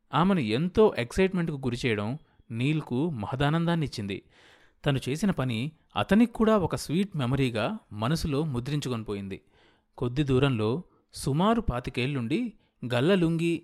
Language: Telugu